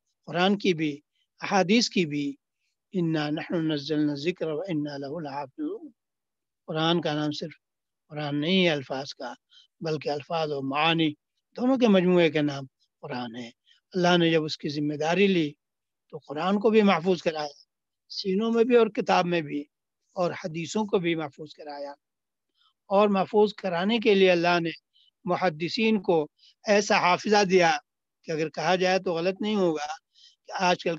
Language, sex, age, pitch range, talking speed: English, male, 60-79, 155-200 Hz, 125 wpm